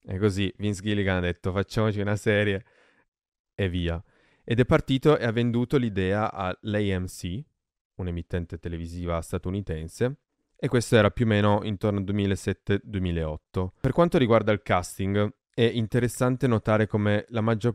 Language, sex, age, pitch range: Italian, male, 20-39, 90-110 Hz